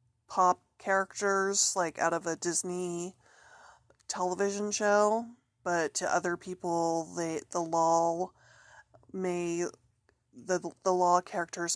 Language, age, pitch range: English, 30-49, 165-190 Hz